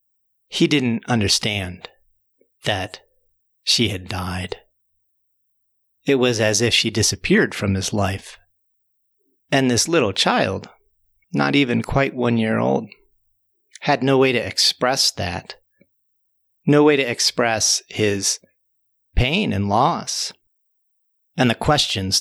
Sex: male